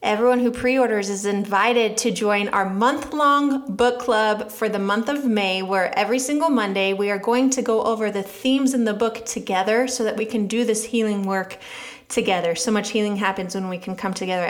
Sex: female